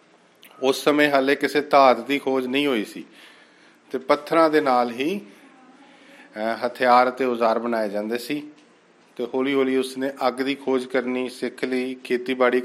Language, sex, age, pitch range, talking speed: Punjabi, male, 40-59, 125-155 Hz, 150 wpm